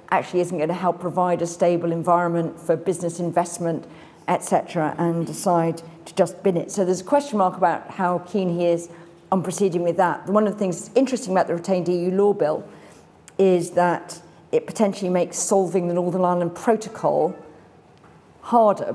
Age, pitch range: 40-59, 170-190 Hz